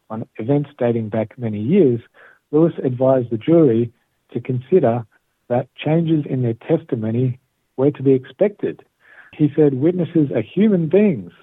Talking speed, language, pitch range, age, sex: 140 wpm, Hebrew, 115-145 Hz, 60-79, male